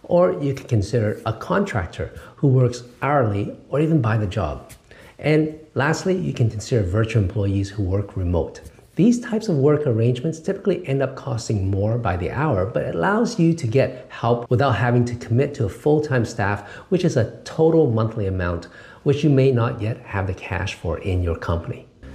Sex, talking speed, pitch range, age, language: male, 190 wpm, 105-145 Hz, 50-69, English